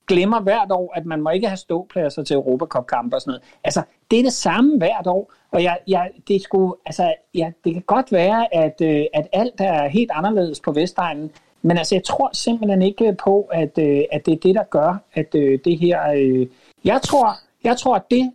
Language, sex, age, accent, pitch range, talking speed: Danish, male, 60-79, native, 160-205 Hz, 205 wpm